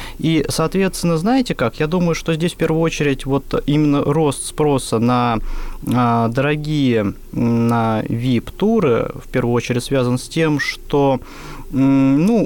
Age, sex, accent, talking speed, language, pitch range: 20-39, male, native, 130 wpm, Russian, 120-170 Hz